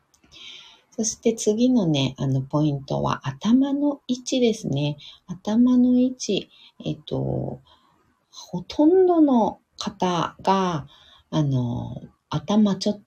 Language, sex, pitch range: Japanese, female, 130-215 Hz